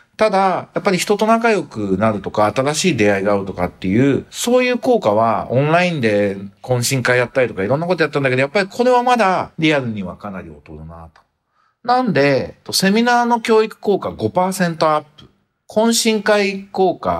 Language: Japanese